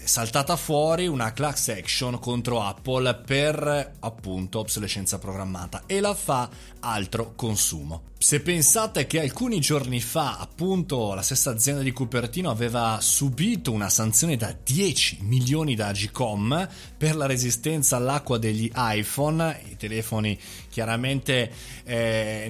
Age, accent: 30-49, native